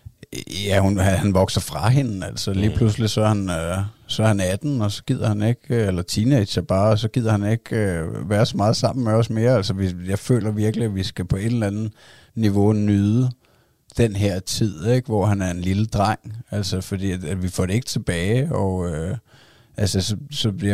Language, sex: Danish, male